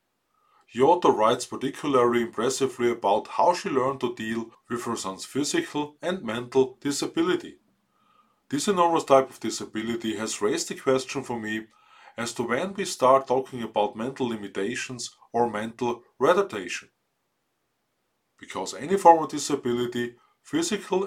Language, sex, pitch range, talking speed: English, male, 115-155 Hz, 130 wpm